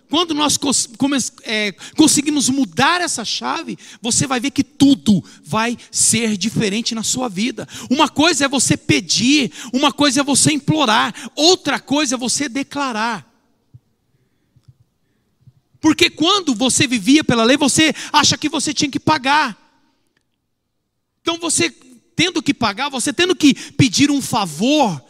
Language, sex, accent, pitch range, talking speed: Portuguese, male, Brazilian, 225-300 Hz, 135 wpm